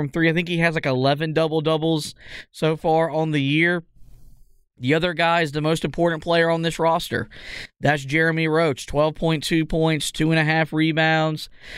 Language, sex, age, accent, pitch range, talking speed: English, male, 20-39, American, 145-165 Hz, 165 wpm